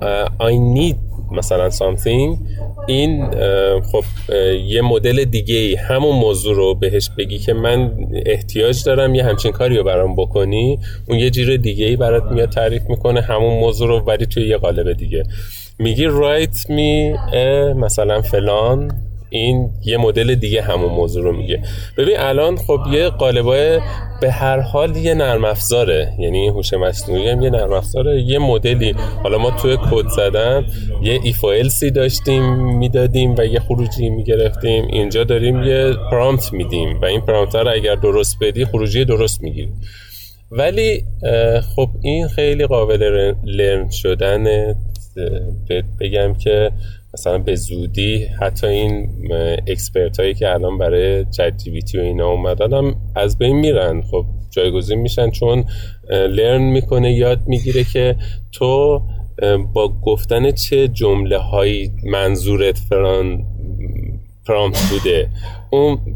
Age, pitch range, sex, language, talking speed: 30-49, 100-125 Hz, male, Persian, 140 wpm